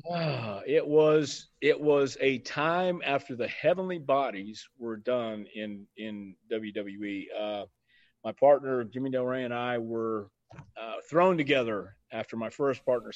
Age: 40-59